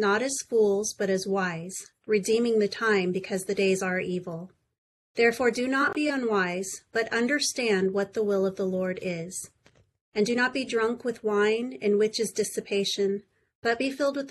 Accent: American